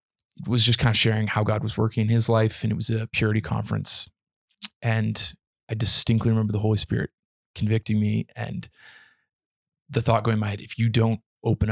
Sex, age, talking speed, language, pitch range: male, 20-39, 195 wpm, English, 110-120 Hz